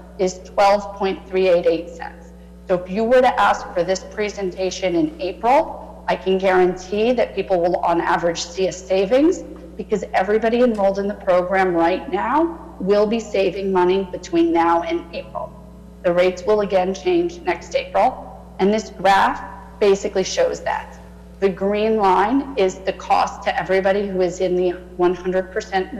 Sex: female